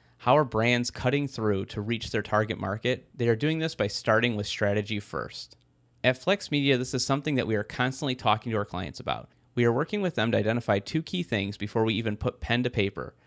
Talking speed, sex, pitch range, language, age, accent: 230 wpm, male, 105-130 Hz, English, 30-49, American